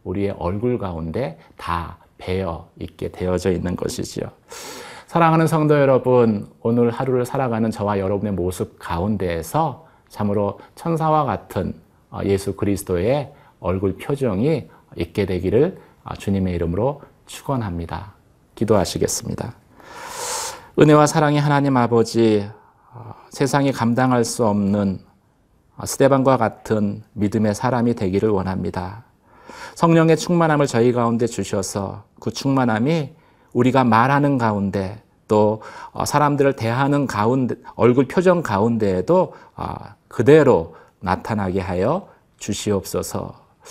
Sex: male